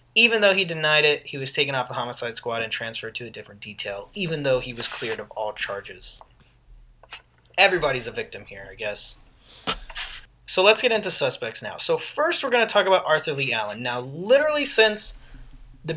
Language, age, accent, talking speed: English, 20-39, American, 195 wpm